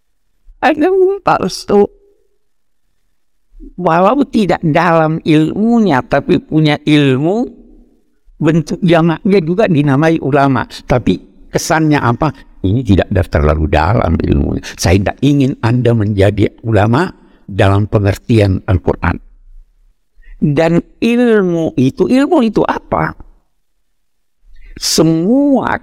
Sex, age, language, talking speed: male, 60-79, Indonesian, 90 wpm